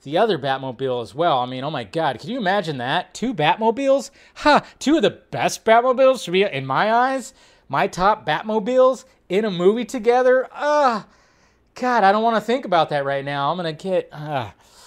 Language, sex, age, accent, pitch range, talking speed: English, male, 30-49, American, 145-225 Hz, 200 wpm